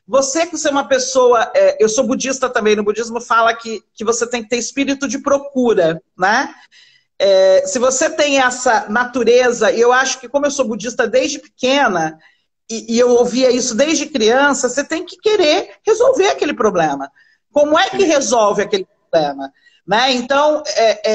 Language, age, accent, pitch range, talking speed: Portuguese, 40-59, Brazilian, 230-285 Hz, 170 wpm